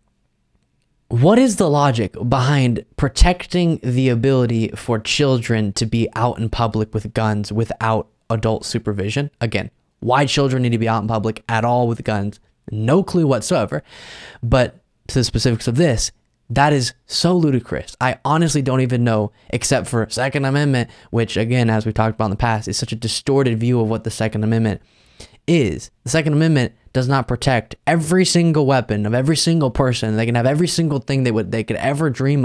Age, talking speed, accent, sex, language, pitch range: 20-39, 185 wpm, American, male, English, 110-135 Hz